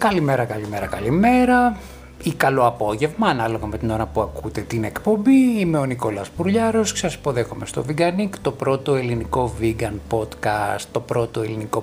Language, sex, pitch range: Greek, male, 115-150 Hz